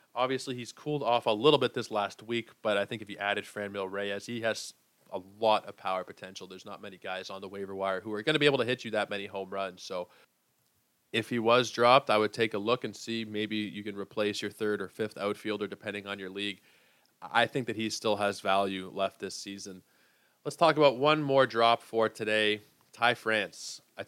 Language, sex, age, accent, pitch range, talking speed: English, male, 20-39, American, 100-120 Hz, 230 wpm